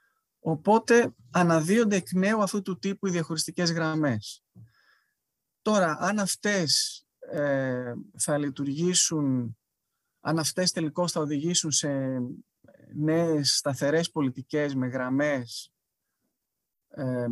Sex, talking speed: male, 95 wpm